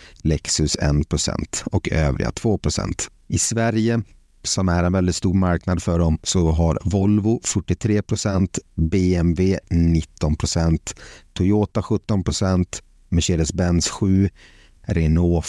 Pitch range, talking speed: 80-100 Hz, 100 wpm